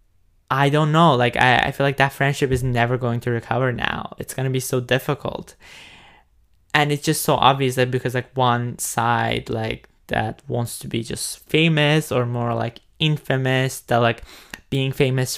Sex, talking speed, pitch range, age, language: male, 185 wpm, 120-145 Hz, 10-29, English